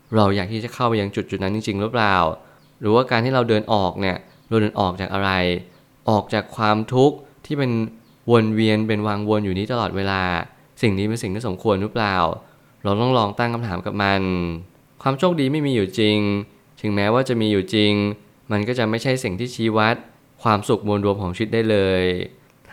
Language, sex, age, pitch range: Thai, male, 20-39, 100-120 Hz